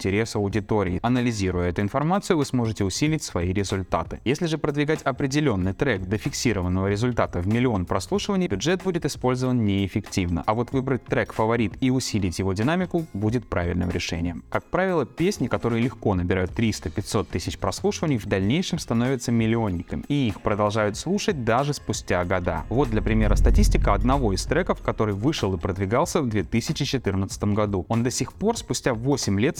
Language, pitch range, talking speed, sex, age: Russian, 100-140 Hz, 160 wpm, male, 20-39